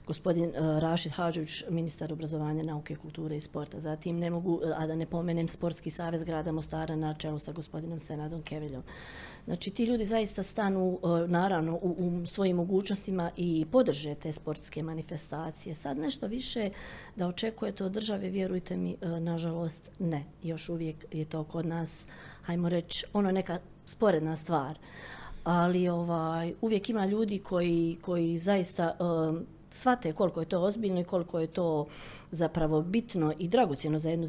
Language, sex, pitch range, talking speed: Croatian, female, 155-185 Hz, 160 wpm